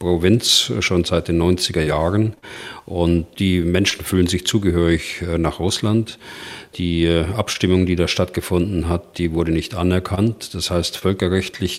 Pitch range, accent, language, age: 85-100 Hz, German, German, 40-59